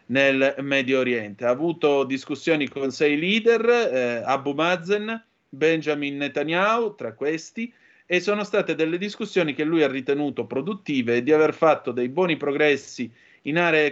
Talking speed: 150 wpm